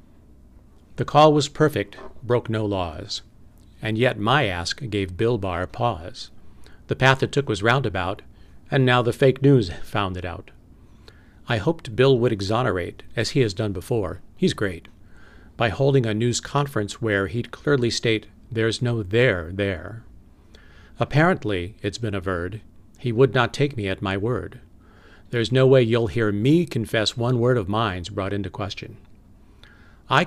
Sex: male